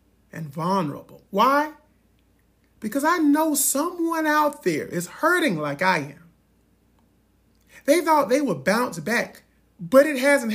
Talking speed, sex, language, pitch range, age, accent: 130 wpm, male, English, 155-250 Hz, 40-59, American